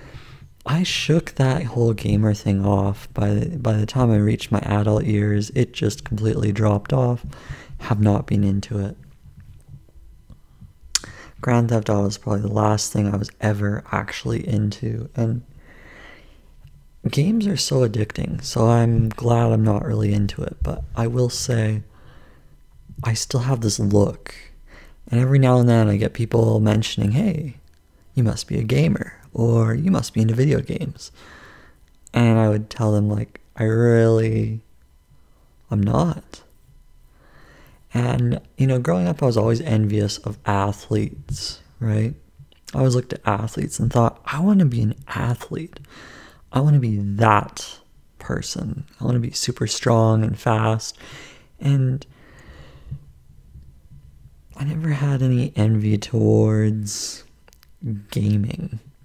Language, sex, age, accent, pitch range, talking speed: English, male, 30-49, American, 105-125 Hz, 140 wpm